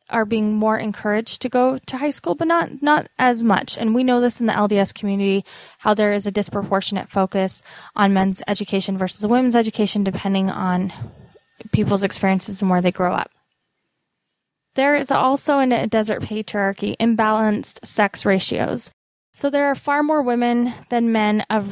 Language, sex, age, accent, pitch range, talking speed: English, female, 10-29, American, 195-230 Hz, 170 wpm